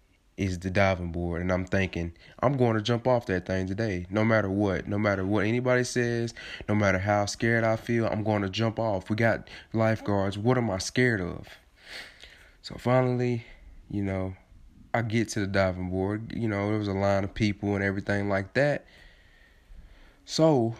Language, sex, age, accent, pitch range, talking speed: English, male, 20-39, American, 95-115 Hz, 190 wpm